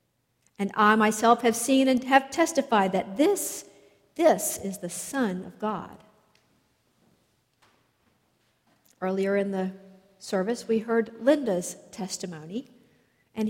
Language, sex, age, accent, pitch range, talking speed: English, female, 50-69, American, 195-255 Hz, 110 wpm